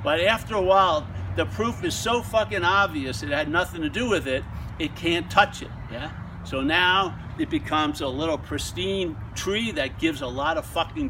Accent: American